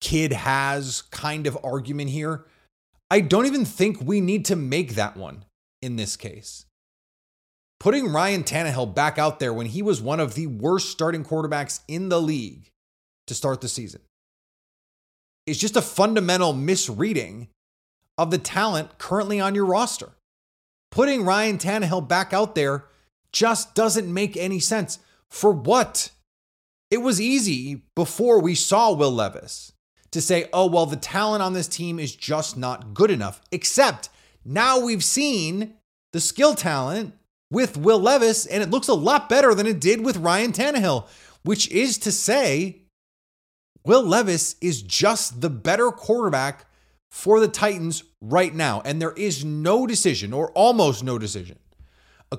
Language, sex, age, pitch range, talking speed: English, male, 30-49, 125-205 Hz, 155 wpm